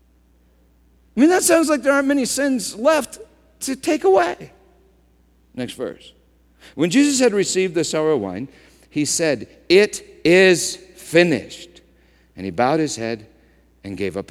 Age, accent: 50-69, American